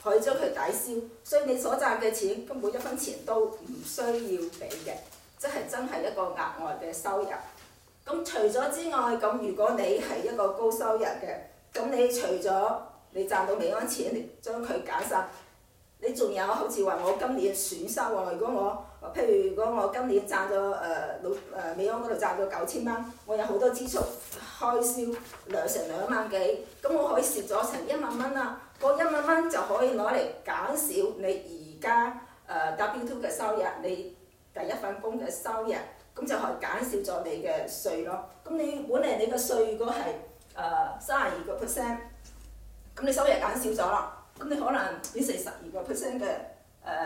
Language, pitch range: Chinese, 210-285 Hz